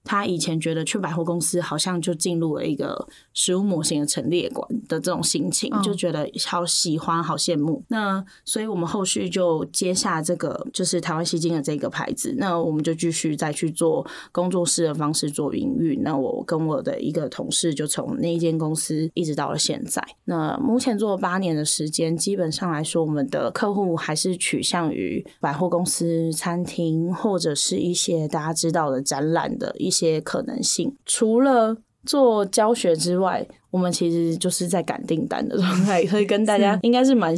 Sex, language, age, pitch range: female, Chinese, 20-39, 160-200 Hz